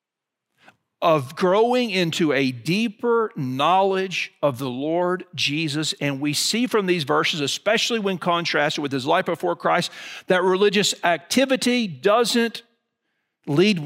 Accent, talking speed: American, 125 wpm